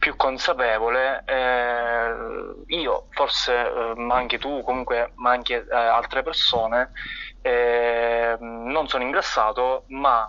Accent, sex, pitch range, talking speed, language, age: native, male, 115-125 Hz, 115 wpm, Italian, 20-39